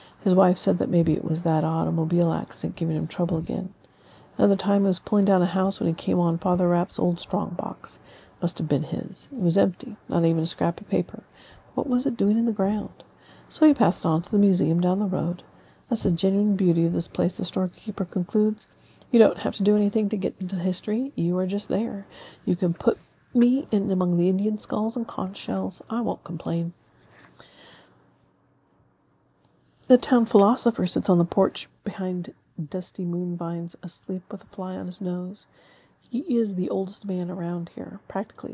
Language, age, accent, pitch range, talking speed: English, 40-59, American, 175-210 Hz, 200 wpm